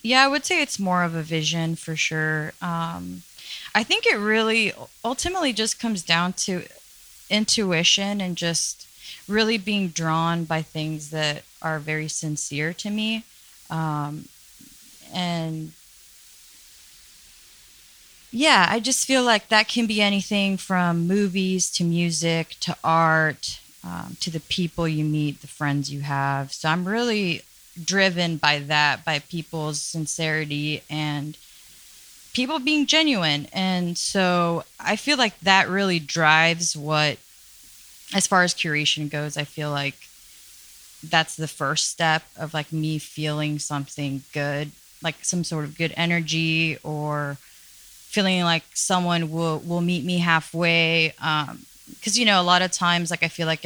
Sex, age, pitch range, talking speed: female, 20-39, 150-190 Hz, 145 wpm